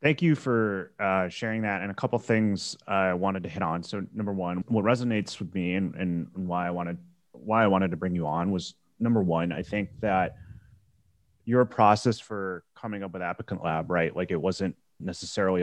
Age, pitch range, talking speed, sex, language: 30-49, 90-115 Hz, 200 wpm, male, English